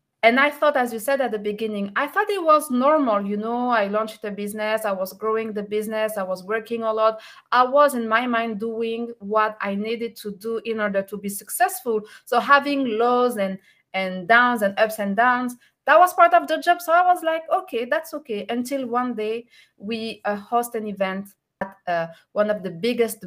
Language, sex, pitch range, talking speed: English, female, 200-245 Hz, 215 wpm